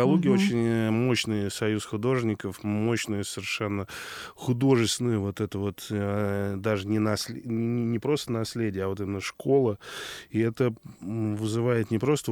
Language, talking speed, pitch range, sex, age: Russian, 120 wpm, 100-115 Hz, male, 20-39